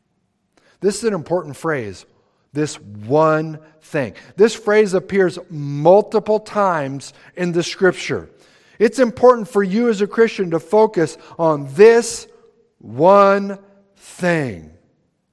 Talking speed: 115 wpm